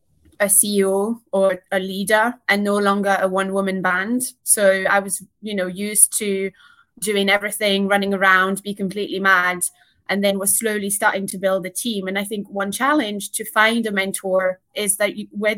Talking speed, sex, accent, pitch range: 180 wpm, female, British, 195-230 Hz